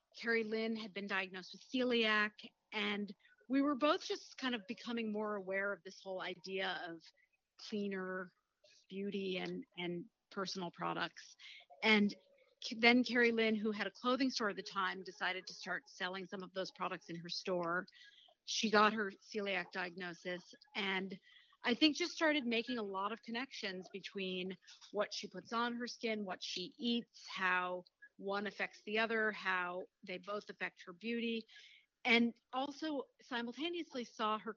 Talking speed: 160 wpm